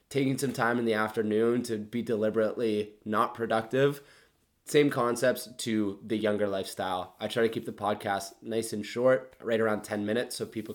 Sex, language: male, English